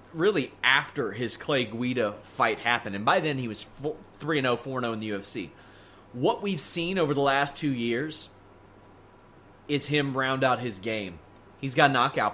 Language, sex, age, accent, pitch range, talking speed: English, male, 30-49, American, 110-175 Hz, 165 wpm